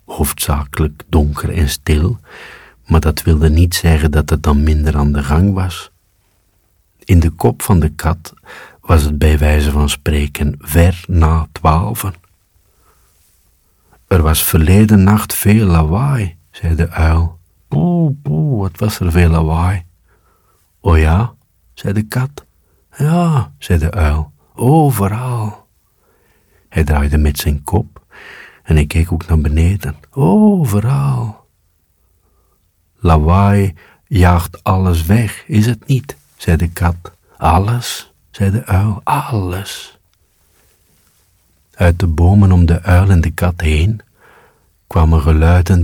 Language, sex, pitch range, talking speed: Dutch, male, 80-100 Hz, 130 wpm